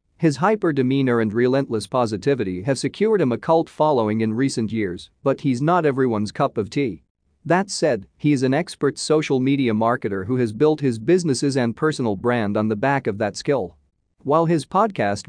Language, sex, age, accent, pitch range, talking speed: English, male, 40-59, American, 110-150 Hz, 185 wpm